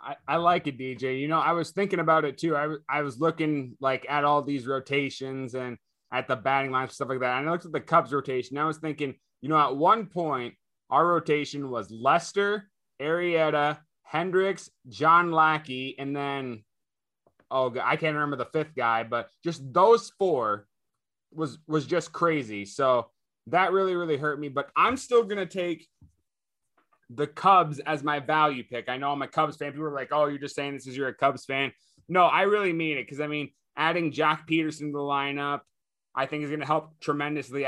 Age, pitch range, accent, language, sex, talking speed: 20-39, 135-160 Hz, American, English, male, 210 wpm